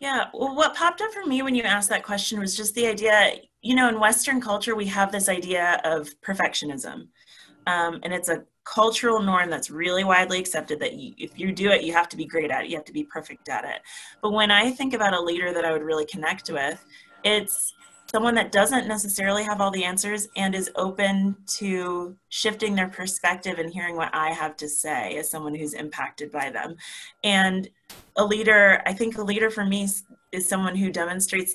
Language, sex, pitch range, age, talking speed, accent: English, female, 170-210 Hz, 30-49, 210 wpm, American